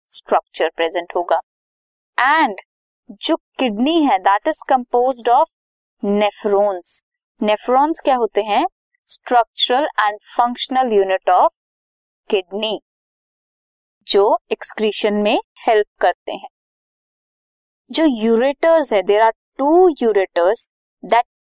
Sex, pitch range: female, 205-315 Hz